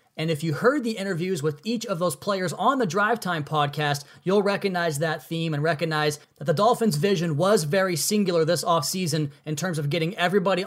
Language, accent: English, American